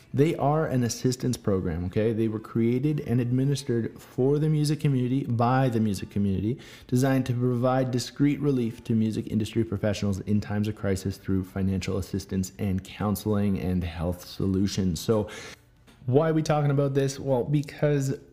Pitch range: 100-135 Hz